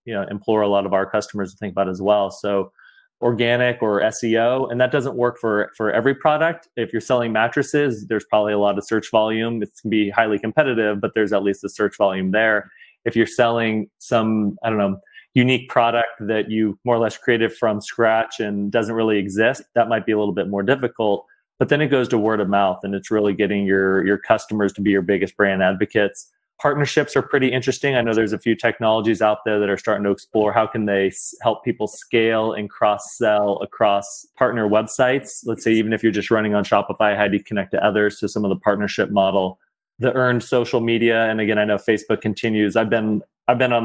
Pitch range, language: 105-115 Hz, English